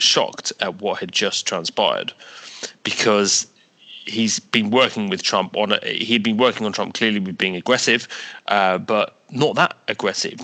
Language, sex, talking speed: English, male, 160 wpm